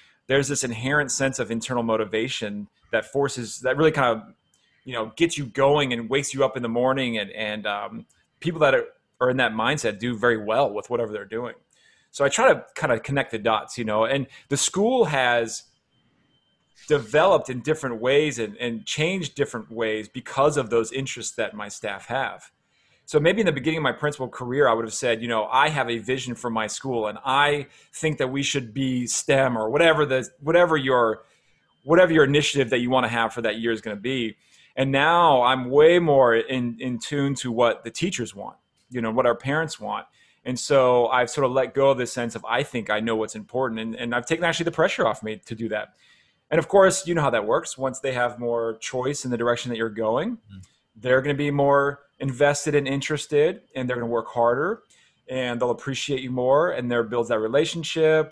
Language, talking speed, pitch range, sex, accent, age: English, 220 wpm, 115-145 Hz, male, American, 30-49